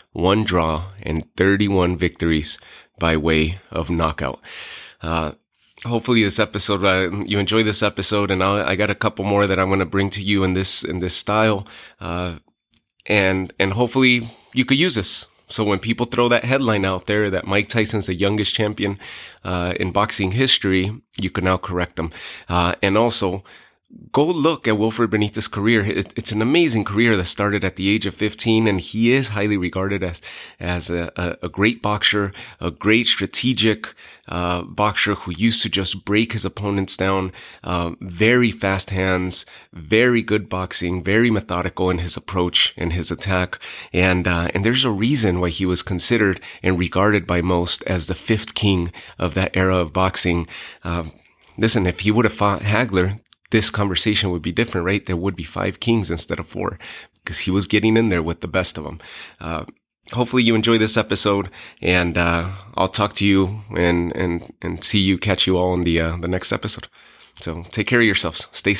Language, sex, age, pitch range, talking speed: English, male, 30-49, 90-110 Hz, 190 wpm